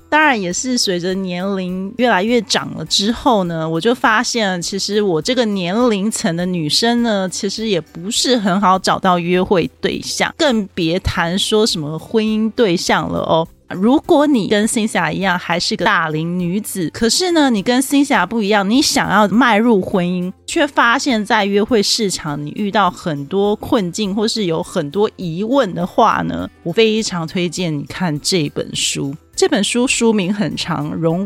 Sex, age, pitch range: female, 30-49, 175-235 Hz